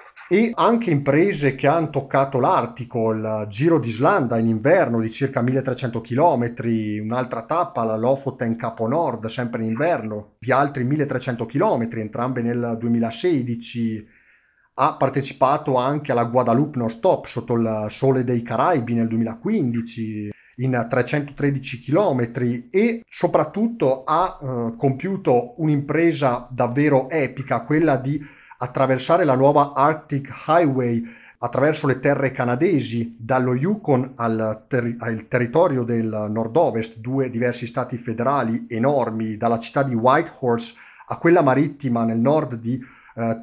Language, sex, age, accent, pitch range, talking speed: Italian, male, 30-49, native, 115-145 Hz, 125 wpm